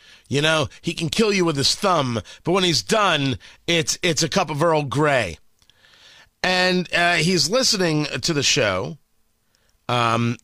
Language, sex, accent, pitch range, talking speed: English, male, American, 115-180 Hz, 160 wpm